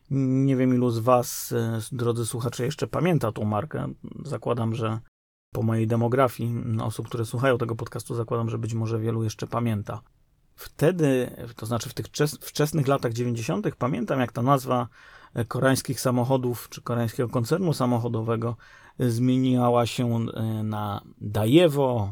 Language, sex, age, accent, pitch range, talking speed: Polish, male, 30-49, native, 115-135 Hz, 135 wpm